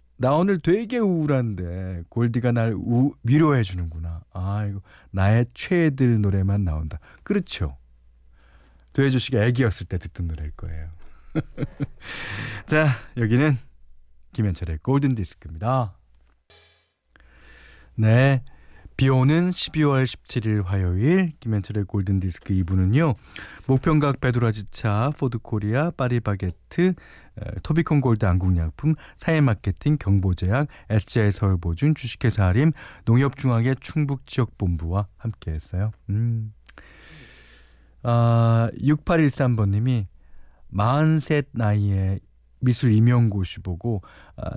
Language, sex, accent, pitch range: Korean, male, native, 90-130 Hz